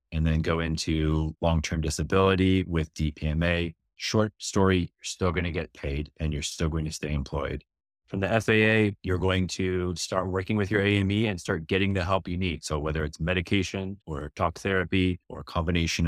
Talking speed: 190 wpm